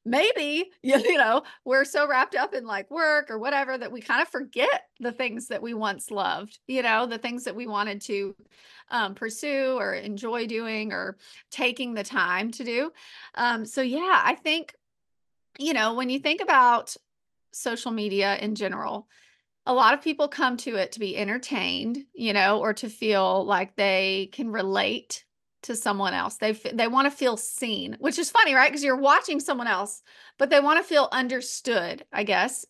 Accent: American